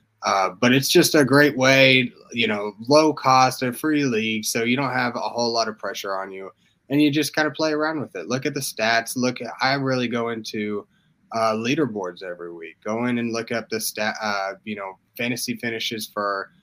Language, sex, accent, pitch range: English, male, American, 100-125 Hz